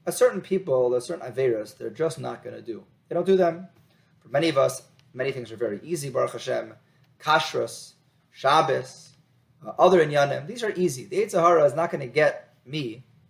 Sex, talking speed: male, 190 wpm